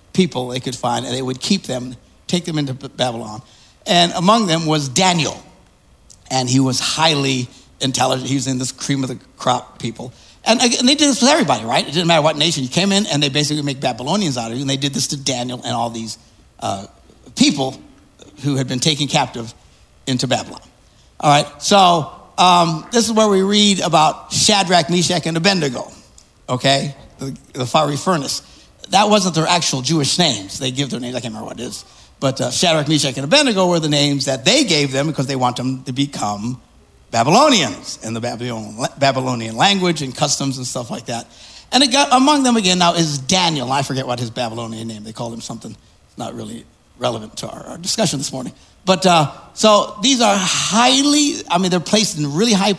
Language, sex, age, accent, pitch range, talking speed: English, male, 60-79, American, 130-180 Hz, 205 wpm